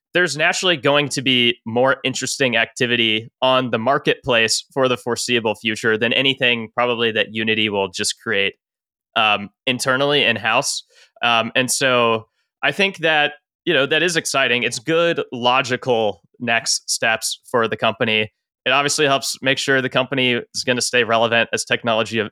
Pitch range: 115-135 Hz